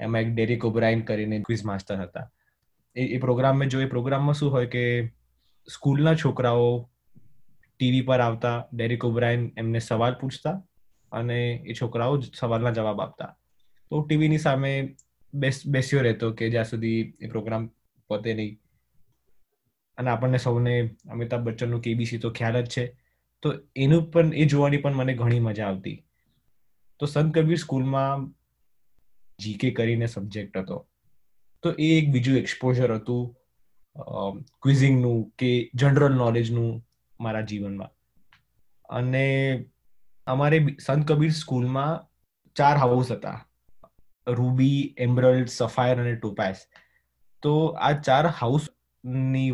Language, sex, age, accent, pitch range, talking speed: Gujarati, male, 20-39, native, 115-135 Hz, 65 wpm